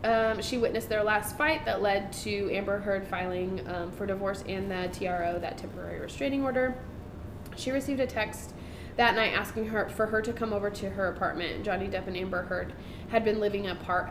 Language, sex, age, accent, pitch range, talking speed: English, female, 20-39, American, 180-225 Hz, 200 wpm